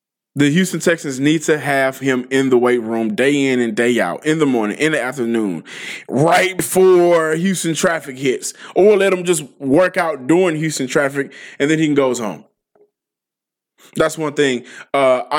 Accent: American